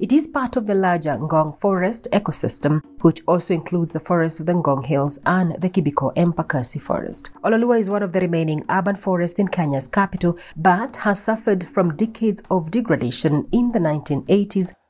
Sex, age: female, 30-49